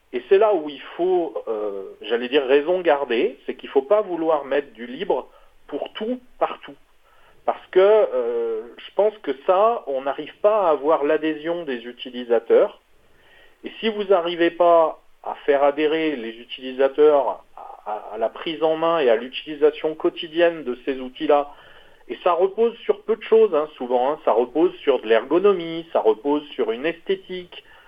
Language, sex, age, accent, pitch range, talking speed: French, male, 40-59, French, 150-235 Hz, 175 wpm